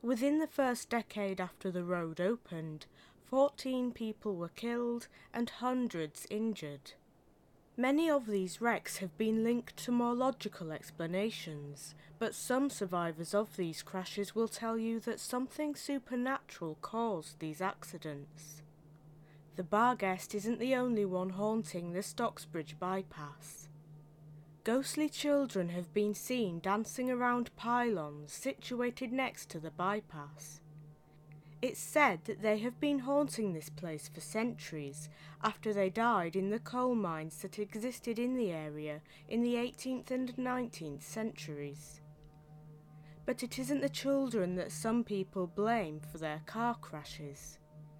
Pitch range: 155-235 Hz